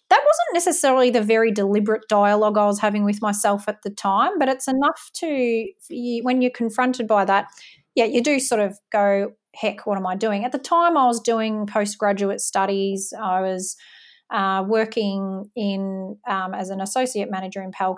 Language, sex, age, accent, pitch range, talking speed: English, female, 30-49, Australian, 195-245 Hz, 185 wpm